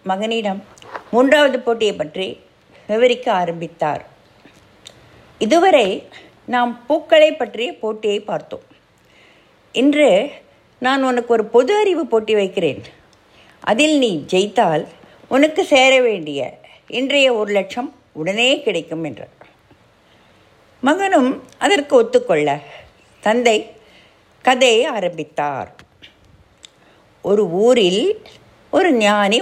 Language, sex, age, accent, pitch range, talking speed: English, female, 60-79, Indian, 205-285 Hz, 75 wpm